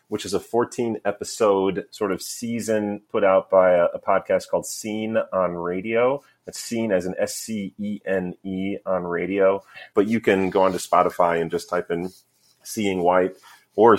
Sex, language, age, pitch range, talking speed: male, English, 30-49, 85-100 Hz, 160 wpm